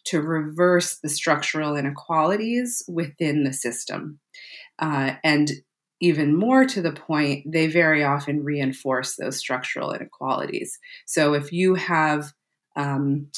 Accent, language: American, English